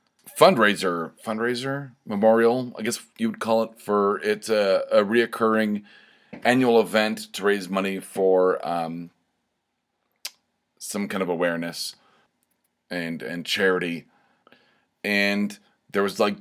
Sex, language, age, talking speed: male, English, 30-49, 115 wpm